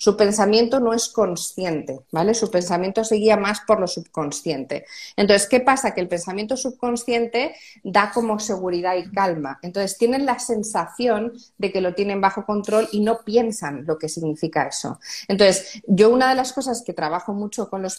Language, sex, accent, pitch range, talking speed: Spanish, female, Spanish, 185-240 Hz, 175 wpm